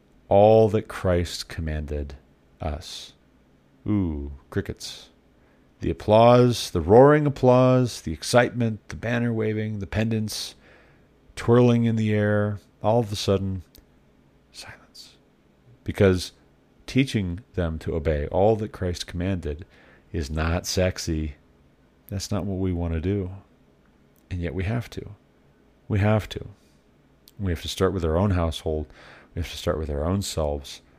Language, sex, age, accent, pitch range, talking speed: English, male, 40-59, American, 75-105 Hz, 140 wpm